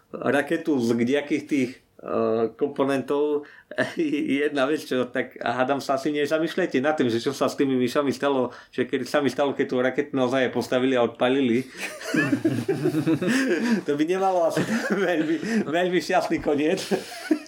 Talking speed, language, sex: 145 wpm, Slovak, male